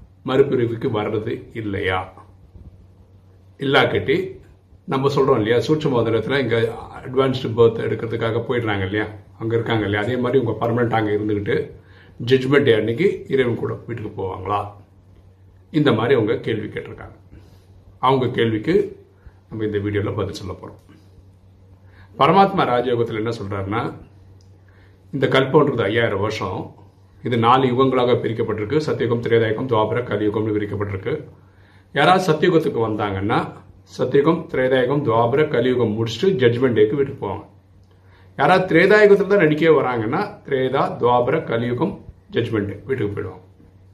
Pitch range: 100-135 Hz